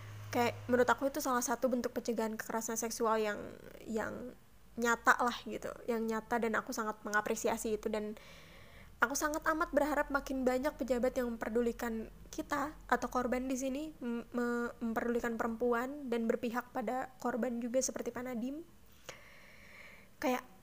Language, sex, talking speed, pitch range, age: Indonesian, female, 135 wpm, 225-260 Hz, 20-39